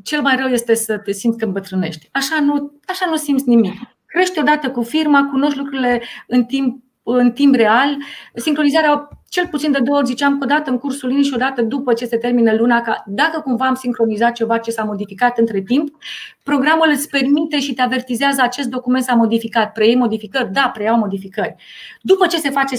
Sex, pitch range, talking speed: female, 220-275 Hz, 195 wpm